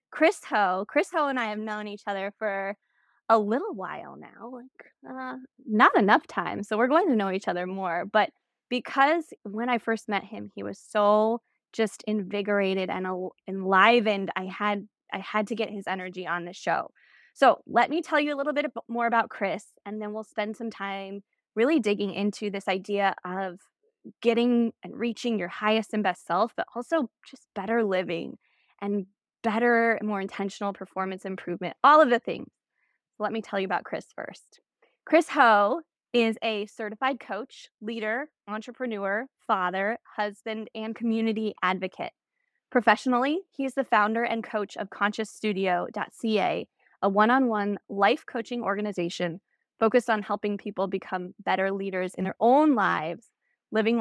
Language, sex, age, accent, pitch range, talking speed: English, female, 10-29, American, 195-235 Hz, 160 wpm